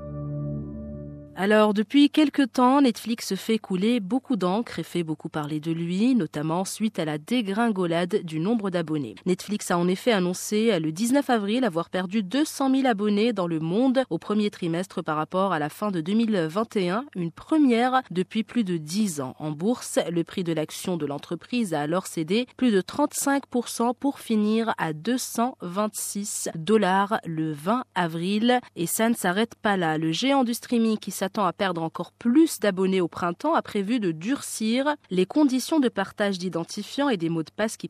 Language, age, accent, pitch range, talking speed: French, 30-49, French, 170-230 Hz, 175 wpm